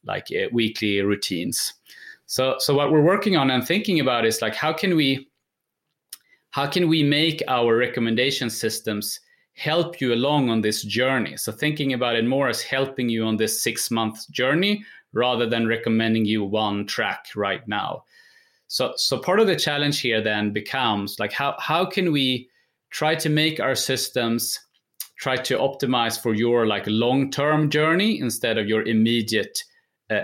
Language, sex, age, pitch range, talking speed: English, male, 30-49, 110-150 Hz, 165 wpm